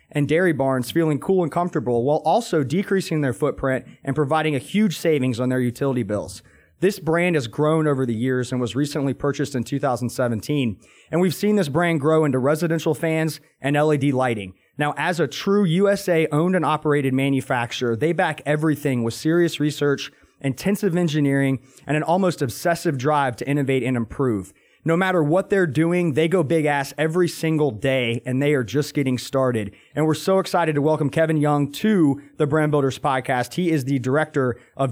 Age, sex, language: 30-49, male, English